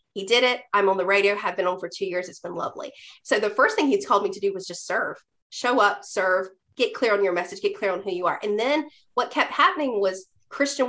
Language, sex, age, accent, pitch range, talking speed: English, female, 30-49, American, 200-285 Hz, 270 wpm